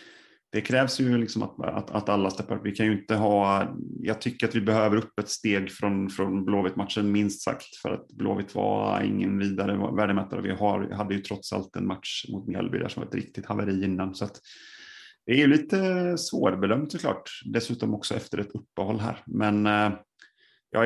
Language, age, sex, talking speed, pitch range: Swedish, 30-49, male, 195 wpm, 95-110 Hz